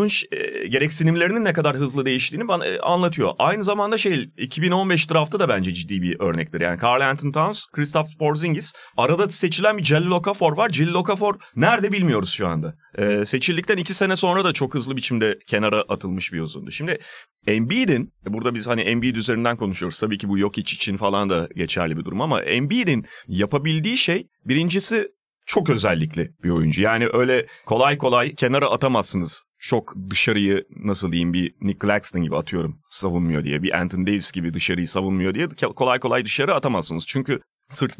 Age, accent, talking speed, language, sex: 30-49, native, 165 wpm, Turkish, male